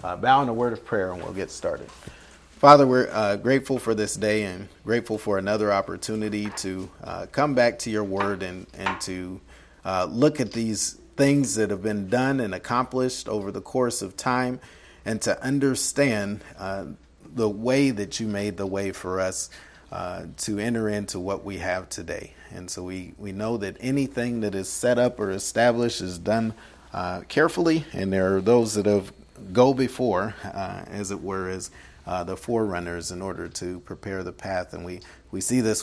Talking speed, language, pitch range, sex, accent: 190 wpm, English, 90-115 Hz, male, American